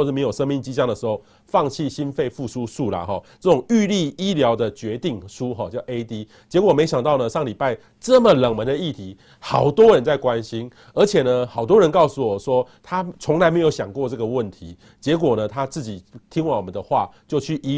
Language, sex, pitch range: Chinese, male, 120-175 Hz